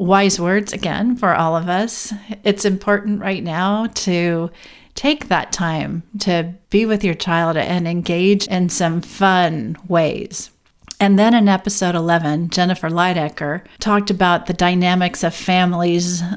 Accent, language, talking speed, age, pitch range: American, English, 145 wpm, 40-59, 175-215 Hz